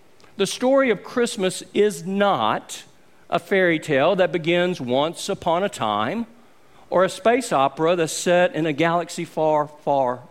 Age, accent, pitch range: 50-69, American, 150-195 Hz